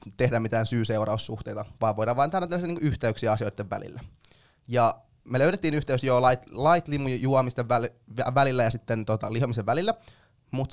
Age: 20-39